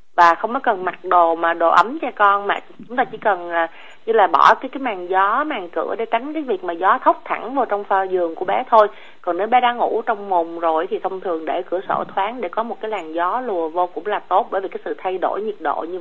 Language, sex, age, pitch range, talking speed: Vietnamese, female, 30-49, 175-235 Hz, 280 wpm